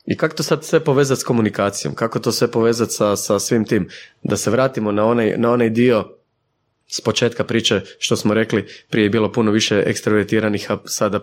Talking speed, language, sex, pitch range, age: 190 wpm, Croatian, male, 105-135 Hz, 30-49